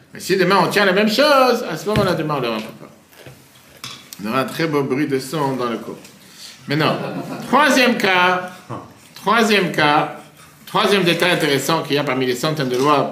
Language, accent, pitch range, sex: French, French, 150-210 Hz, male